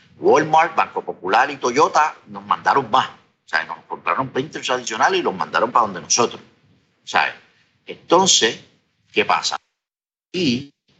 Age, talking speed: 50-69, 140 wpm